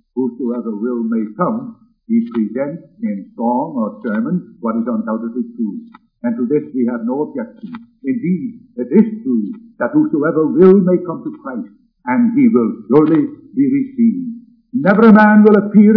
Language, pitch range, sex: English, 175-230 Hz, male